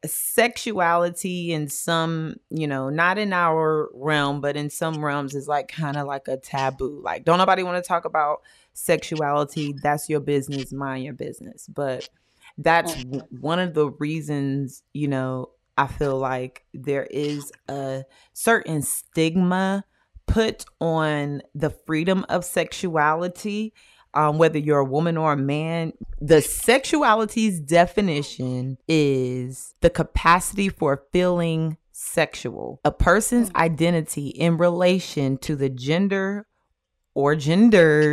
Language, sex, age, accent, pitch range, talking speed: English, female, 30-49, American, 140-170 Hz, 130 wpm